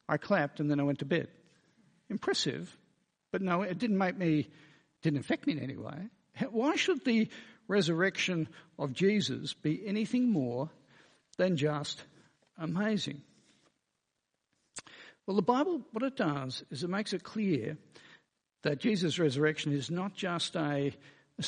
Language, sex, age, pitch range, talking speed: English, male, 60-79, 140-195 Hz, 140 wpm